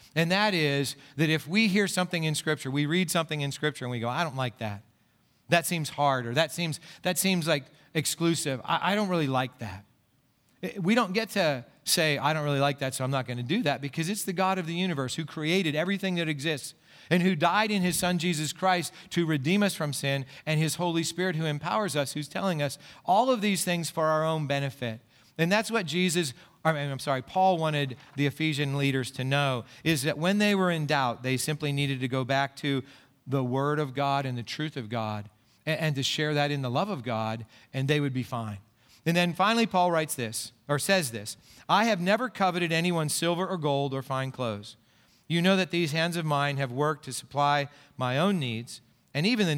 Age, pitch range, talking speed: 40-59, 130-170 Hz, 225 wpm